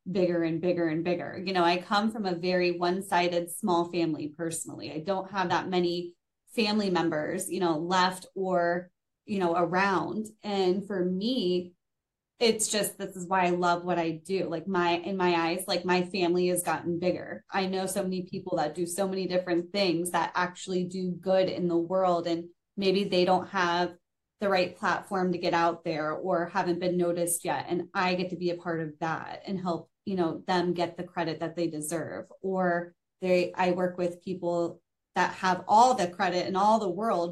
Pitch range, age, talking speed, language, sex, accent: 175-195 Hz, 20-39, 200 wpm, English, female, American